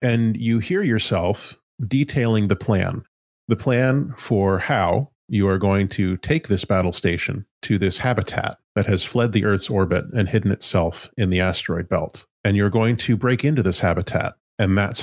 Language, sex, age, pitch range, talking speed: English, male, 30-49, 95-115 Hz, 180 wpm